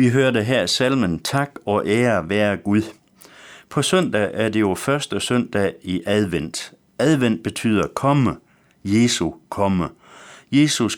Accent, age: native, 60-79